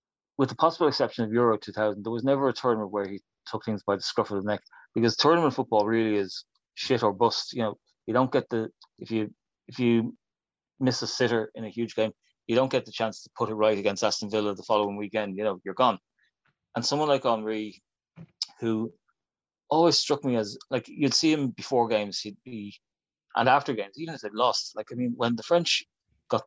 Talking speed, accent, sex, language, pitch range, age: 220 wpm, Irish, male, English, 105-125 Hz, 30-49